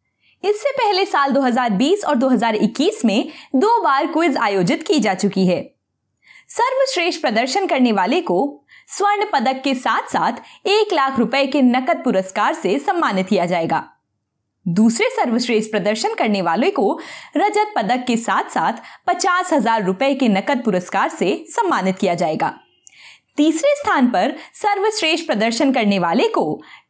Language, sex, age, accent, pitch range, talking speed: Hindi, female, 20-39, native, 220-350 Hz, 145 wpm